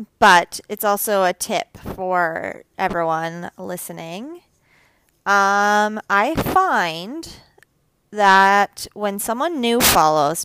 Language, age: English, 30-49